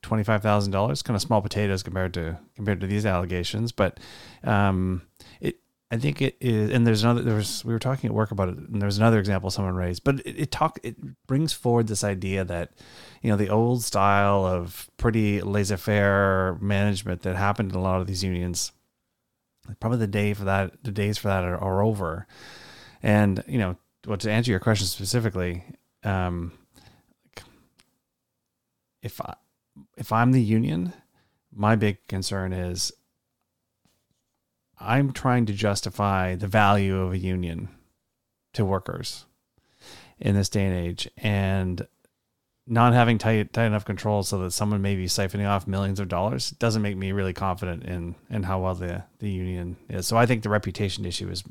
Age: 30-49